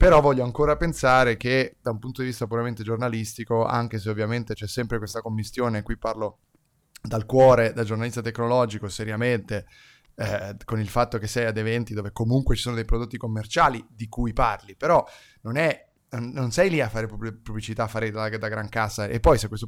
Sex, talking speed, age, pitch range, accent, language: male, 195 wpm, 20-39, 110-120 Hz, native, Italian